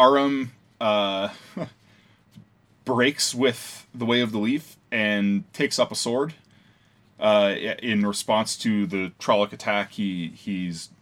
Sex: male